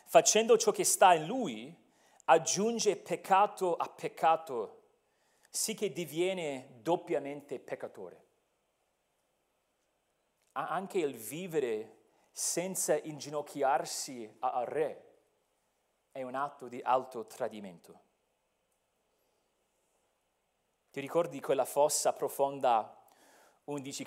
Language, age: Italian, 40-59